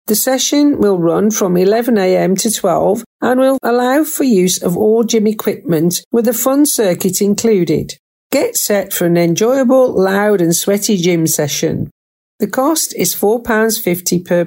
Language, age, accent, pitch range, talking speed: English, 50-69, British, 175-235 Hz, 155 wpm